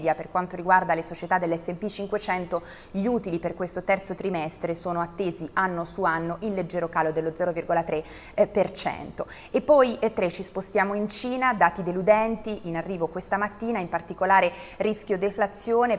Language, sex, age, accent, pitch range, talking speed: Italian, female, 30-49, native, 170-210 Hz, 155 wpm